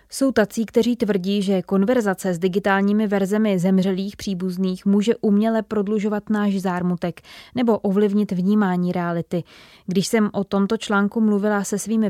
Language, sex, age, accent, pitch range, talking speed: Czech, female, 20-39, native, 185-215 Hz, 140 wpm